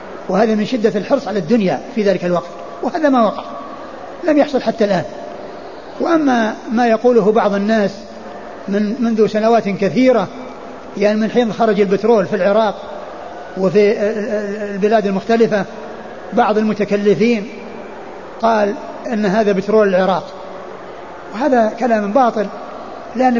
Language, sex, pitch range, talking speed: Arabic, male, 205-250 Hz, 120 wpm